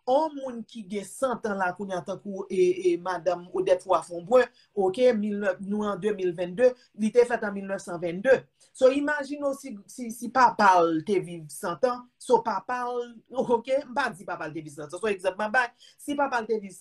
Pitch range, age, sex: 175-235 Hz, 40-59, male